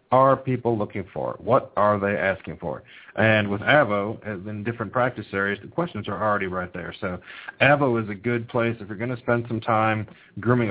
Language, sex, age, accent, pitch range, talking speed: English, male, 40-59, American, 100-115 Hz, 205 wpm